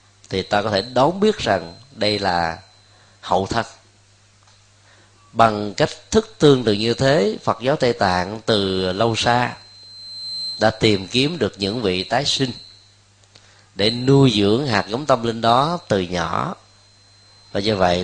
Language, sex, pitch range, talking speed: Vietnamese, male, 100-115 Hz, 155 wpm